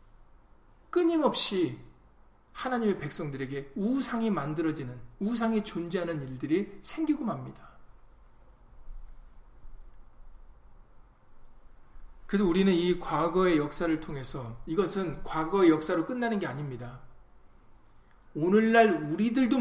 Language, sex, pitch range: Korean, male, 120-180 Hz